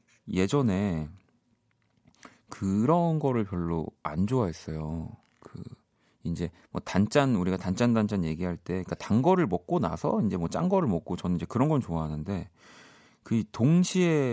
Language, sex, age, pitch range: Korean, male, 40-59, 85-120 Hz